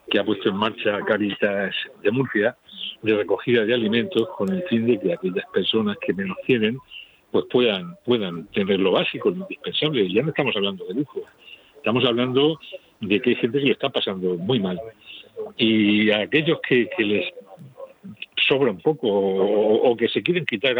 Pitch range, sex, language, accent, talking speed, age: 105-155 Hz, male, Spanish, Spanish, 185 wpm, 50-69